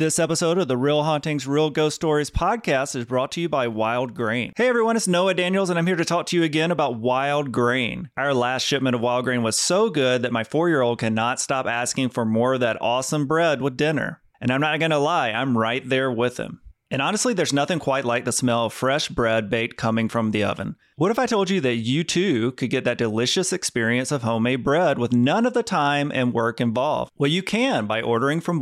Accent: American